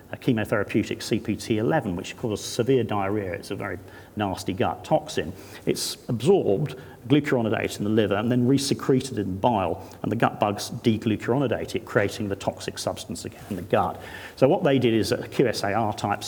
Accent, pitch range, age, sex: British, 95-125 Hz, 40-59, male